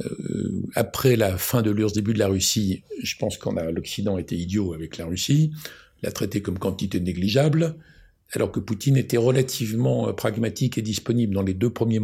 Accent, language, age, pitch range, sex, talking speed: French, French, 60-79, 100-125 Hz, male, 185 wpm